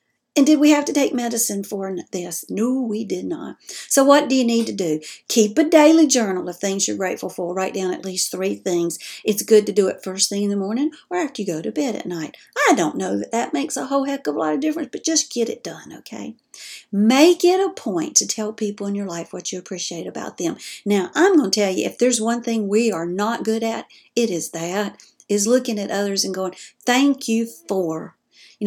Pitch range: 185-255 Hz